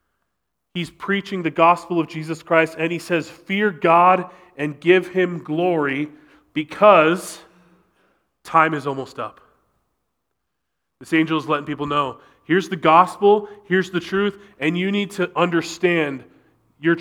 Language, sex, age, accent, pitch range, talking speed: English, male, 30-49, American, 130-175 Hz, 140 wpm